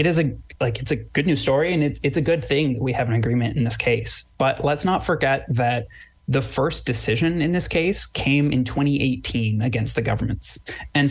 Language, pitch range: English, 115-145 Hz